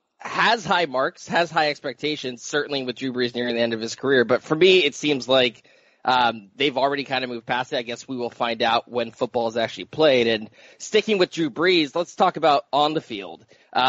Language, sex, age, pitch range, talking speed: English, male, 20-39, 120-150 Hz, 225 wpm